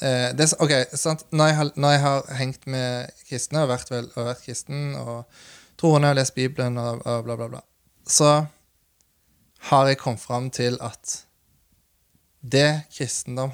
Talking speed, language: 130 wpm, English